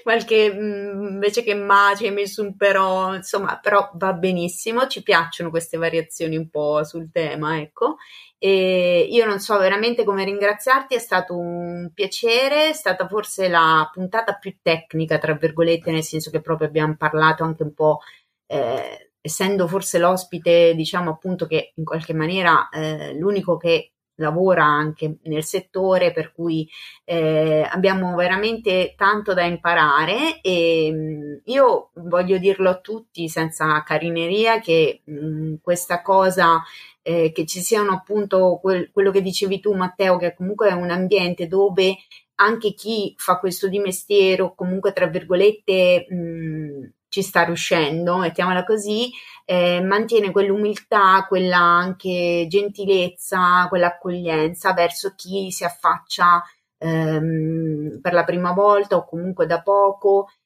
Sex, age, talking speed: female, 30-49, 135 wpm